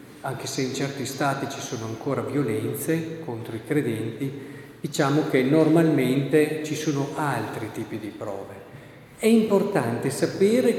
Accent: native